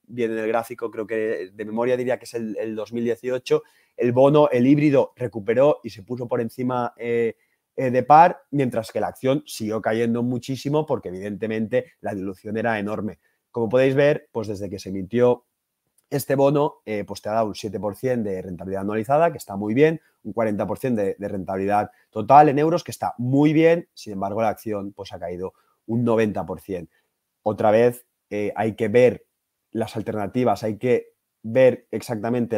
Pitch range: 110-125 Hz